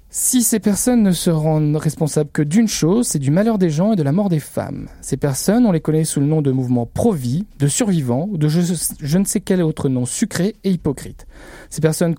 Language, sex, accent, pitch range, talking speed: French, male, French, 145-205 Hz, 235 wpm